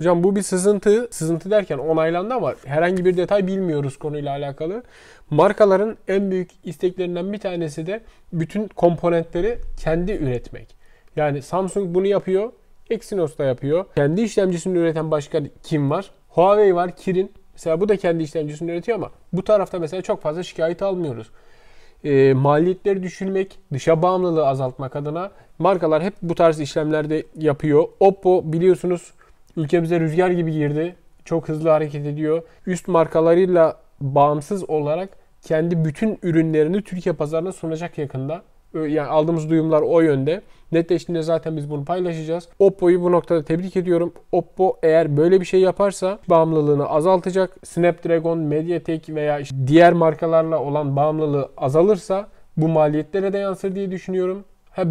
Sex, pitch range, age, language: male, 155-185 Hz, 30-49, Turkish